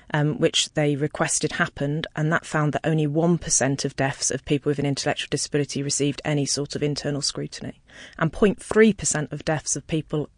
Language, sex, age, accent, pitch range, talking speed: English, female, 30-49, British, 145-170 Hz, 180 wpm